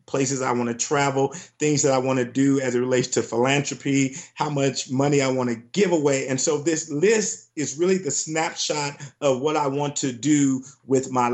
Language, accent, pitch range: English, American, 130-150 Hz